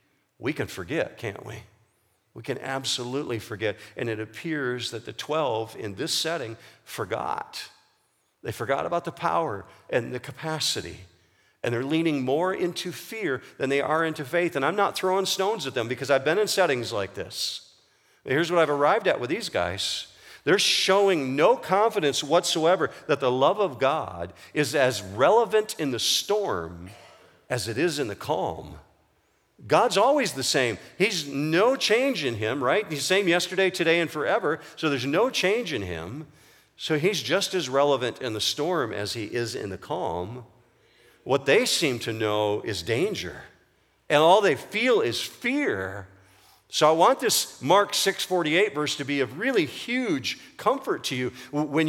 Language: English